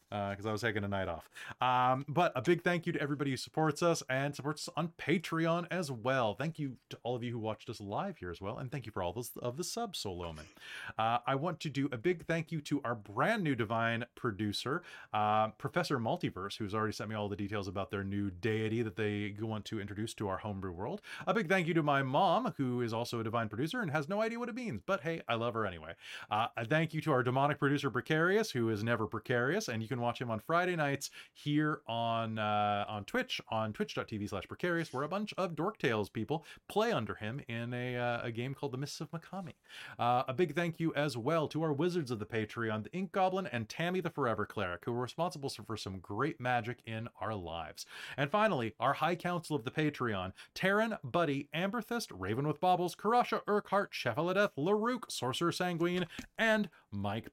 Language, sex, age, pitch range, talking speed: English, male, 30-49, 110-170 Hz, 230 wpm